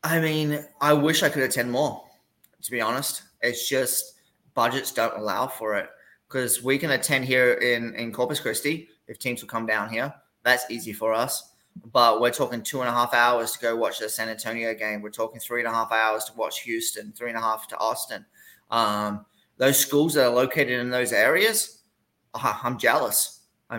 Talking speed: 200 wpm